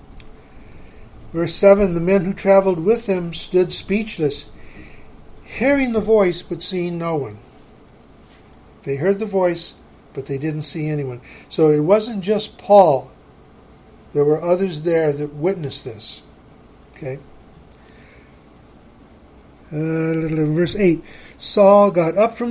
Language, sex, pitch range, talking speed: English, male, 145-185 Hz, 120 wpm